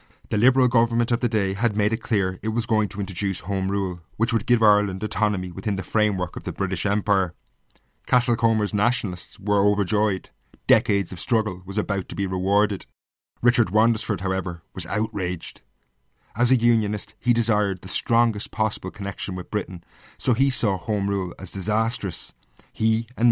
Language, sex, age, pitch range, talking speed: English, male, 30-49, 95-115 Hz, 170 wpm